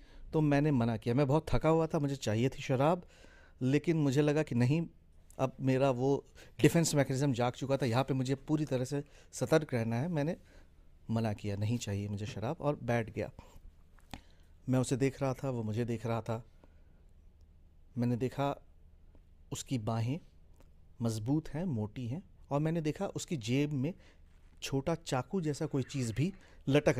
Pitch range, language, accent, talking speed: 100-145 Hz, Hindi, native, 170 wpm